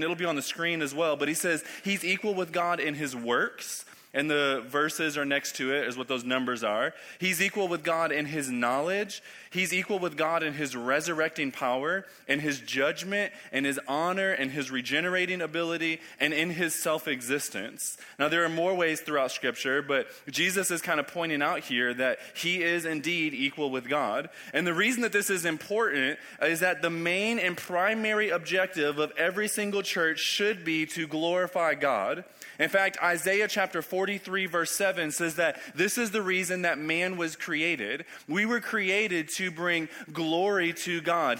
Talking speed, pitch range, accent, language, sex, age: 185 wpm, 160-200 Hz, American, English, male, 20-39